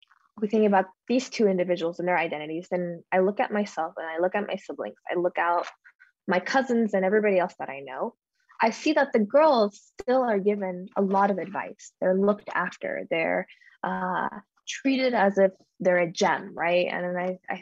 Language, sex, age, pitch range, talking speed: English, female, 10-29, 185-215 Hz, 200 wpm